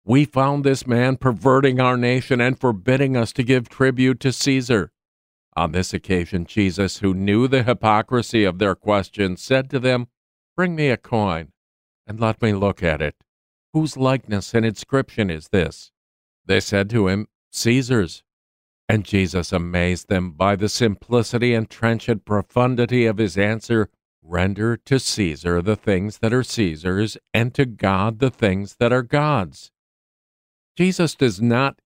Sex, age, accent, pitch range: male, 50-69, American, 105-130 Hz